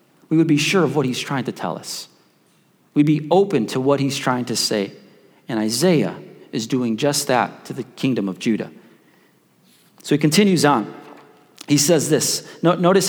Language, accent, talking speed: English, American, 180 wpm